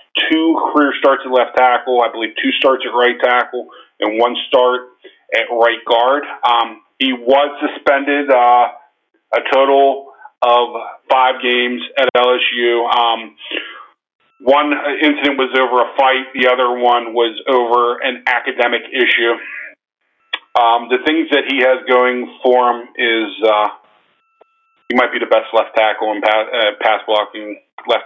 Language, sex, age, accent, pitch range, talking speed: English, male, 40-59, American, 110-130 Hz, 145 wpm